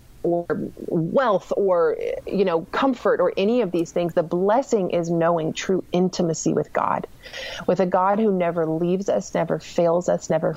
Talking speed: 170 wpm